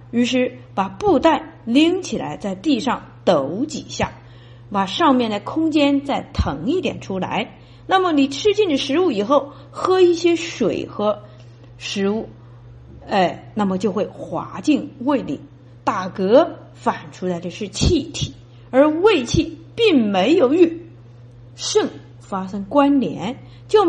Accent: native